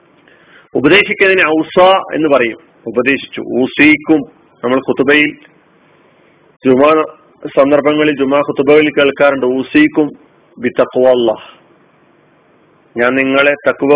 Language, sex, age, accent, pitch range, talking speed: Malayalam, male, 40-59, native, 130-155 Hz, 75 wpm